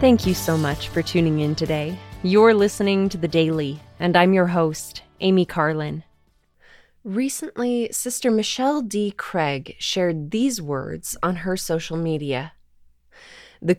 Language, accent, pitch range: English, American, 165-210 Hz